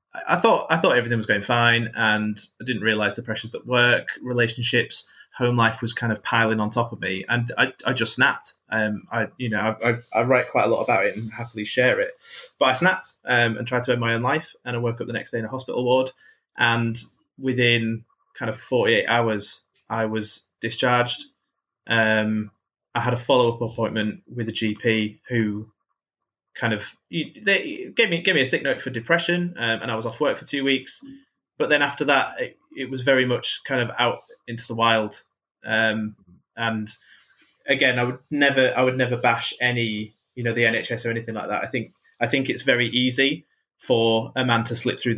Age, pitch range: 20-39, 110-125 Hz